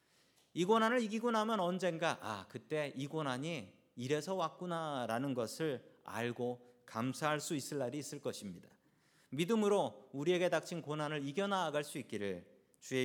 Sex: male